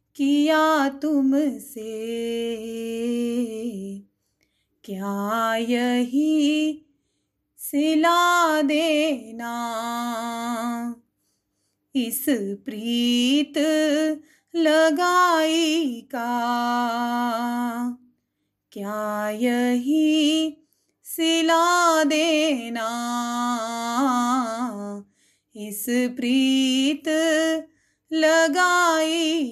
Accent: native